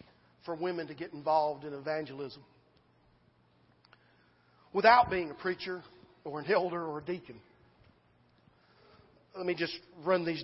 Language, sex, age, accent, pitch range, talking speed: English, male, 40-59, American, 155-230 Hz, 125 wpm